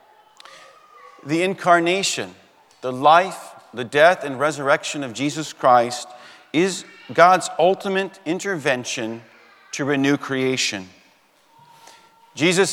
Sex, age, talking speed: male, 40-59, 90 wpm